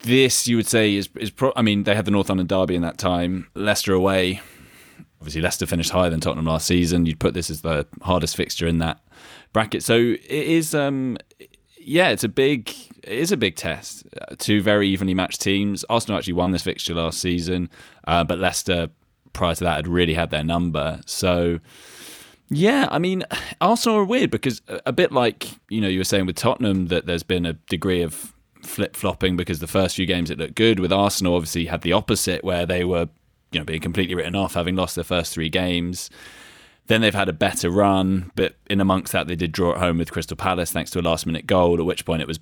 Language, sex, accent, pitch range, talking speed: English, male, British, 85-105 Hz, 225 wpm